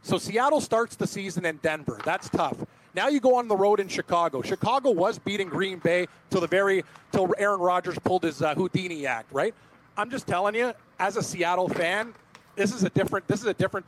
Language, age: English, 30-49